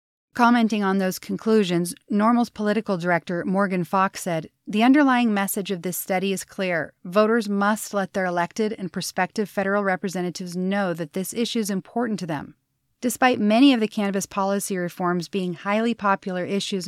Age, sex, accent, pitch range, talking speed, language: 30-49, female, American, 180-220 Hz, 165 wpm, English